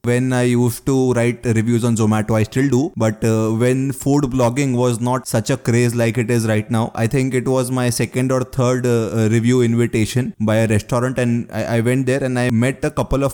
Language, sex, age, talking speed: English, male, 20-39, 230 wpm